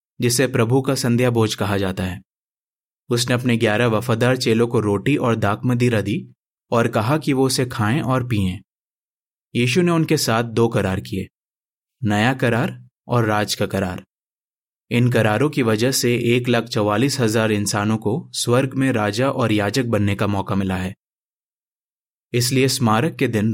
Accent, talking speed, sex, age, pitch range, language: native, 165 wpm, male, 20-39, 105-130 Hz, Hindi